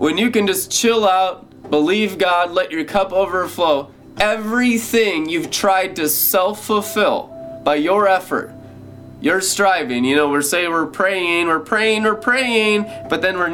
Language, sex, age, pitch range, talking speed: English, male, 20-39, 140-210 Hz, 155 wpm